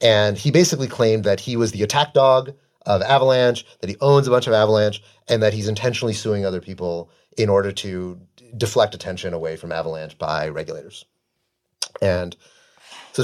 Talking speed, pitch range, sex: 175 wpm, 90-115 Hz, male